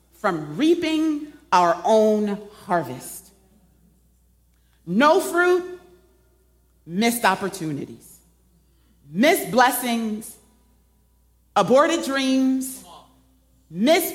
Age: 40-59